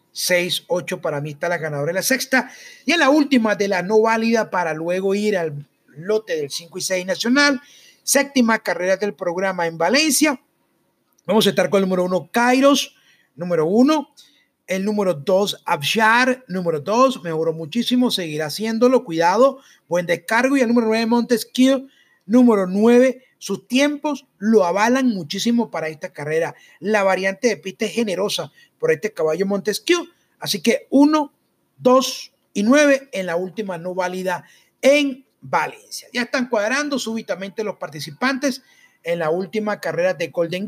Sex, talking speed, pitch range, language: male, 160 wpm, 175-250 Hz, Spanish